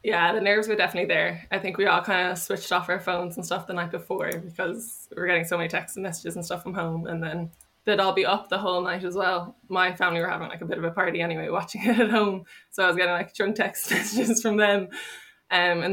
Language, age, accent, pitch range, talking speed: English, 10-29, Irish, 175-195 Hz, 270 wpm